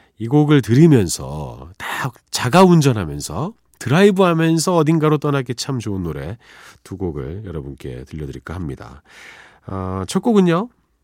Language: Korean